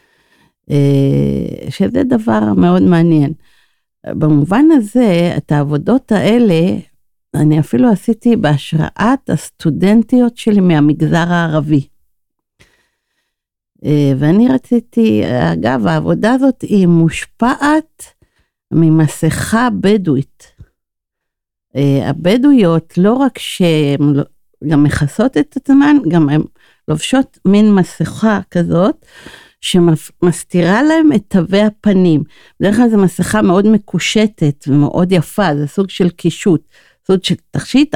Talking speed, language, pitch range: 95 wpm, Hebrew, 155-215 Hz